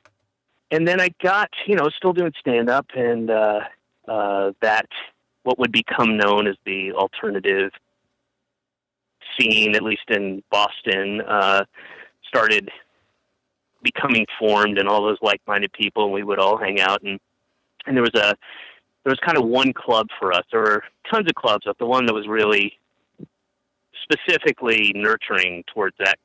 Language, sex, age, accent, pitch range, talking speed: English, male, 30-49, American, 95-115 Hz, 160 wpm